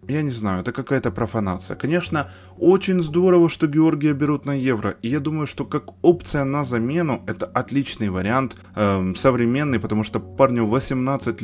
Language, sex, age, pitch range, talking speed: Ukrainian, male, 20-39, 100-140 Hz, 165 wpm